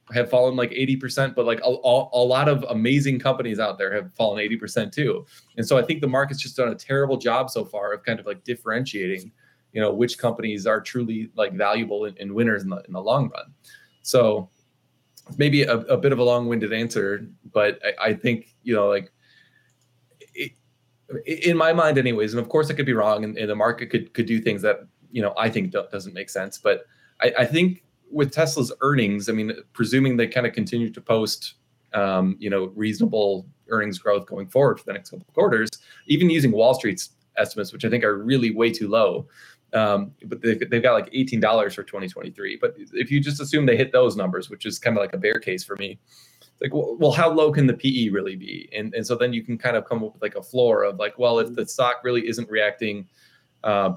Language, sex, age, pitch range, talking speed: English, male, 20-39, 110-135 Hz, 230 wpm